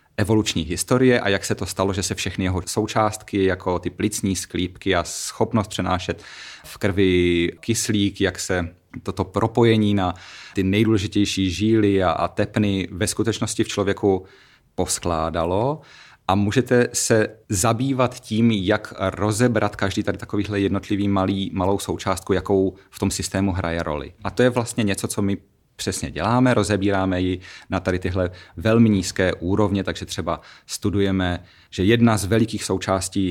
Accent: native